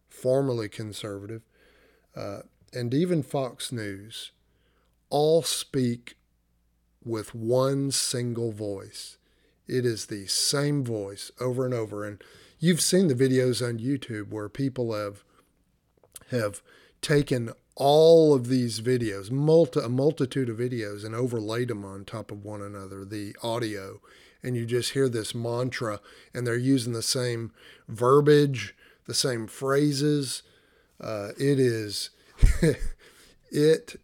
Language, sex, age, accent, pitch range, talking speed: English, male, 50-69, American, 110-135 Hz, 125 wpm